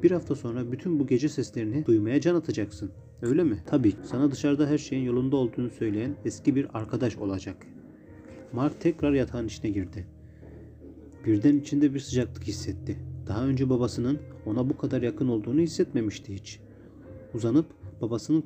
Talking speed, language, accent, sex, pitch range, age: 150 wpm, Turkish, native, male, 105-140 Hz, 40-59